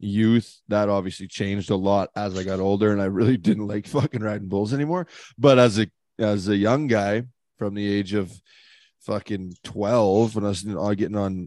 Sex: male